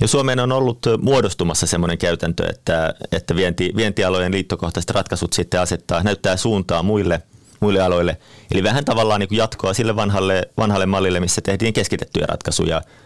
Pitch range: 90-105 Hz